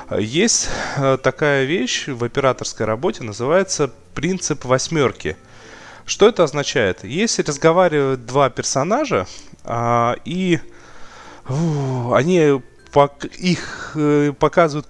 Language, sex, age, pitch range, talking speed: Russian, male, 20-39, 120-155 Hz, 80 wpm